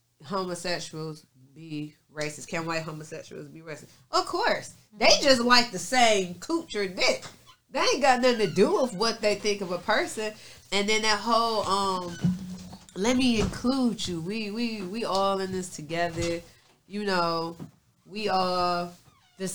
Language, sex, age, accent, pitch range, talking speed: English, female, 20-39, American, 155-220 Hz, 155 wpm